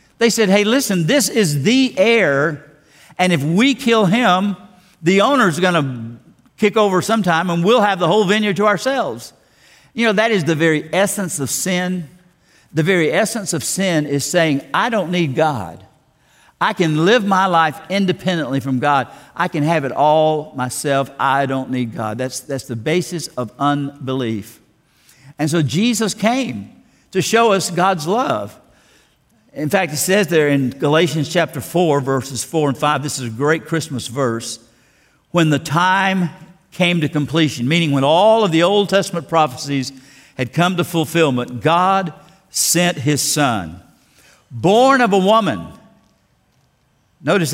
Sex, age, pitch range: male, 60-79, 135-185 Hz